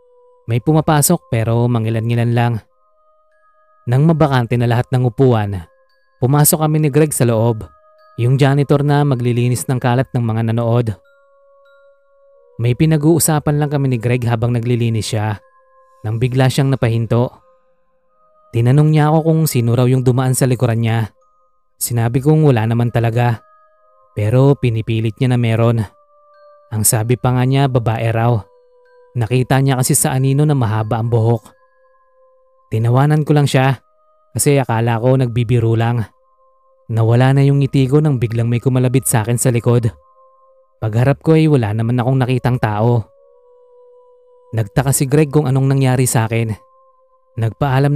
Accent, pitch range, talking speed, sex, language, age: native, 120-175 Hz, 145 wpm, male, Filipino, 20-39